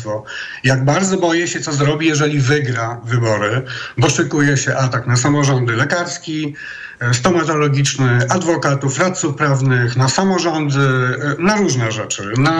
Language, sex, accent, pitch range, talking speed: Polish, male, native, 135-180 Hz, 125 wpm